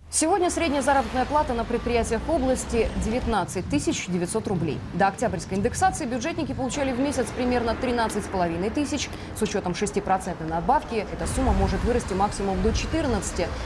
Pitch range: 200-275 Hz